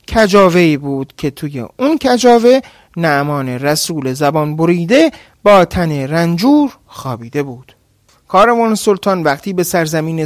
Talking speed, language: 115 wpm, Persian